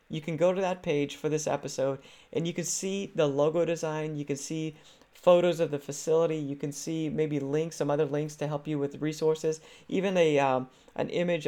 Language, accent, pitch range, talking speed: English, American, 145-180 Hz, 215 wpm